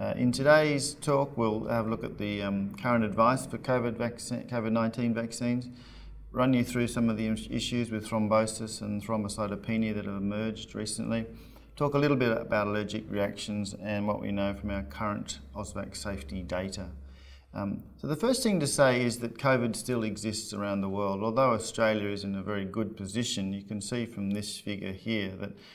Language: English